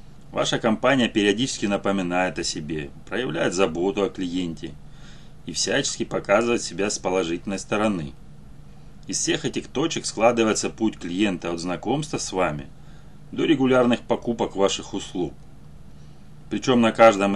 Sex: male